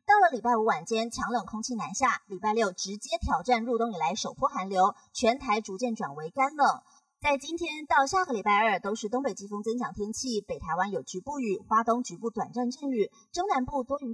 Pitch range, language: 205-270 Hz, Chinese